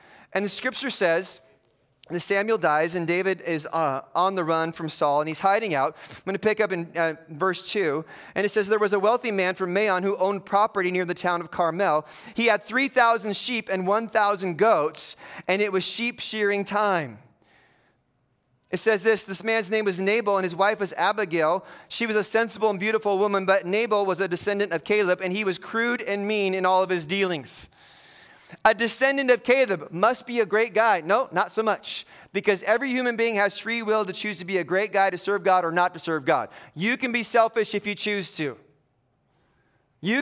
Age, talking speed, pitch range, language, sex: 30-49, 210 wpm, 180-220 Hz, English, male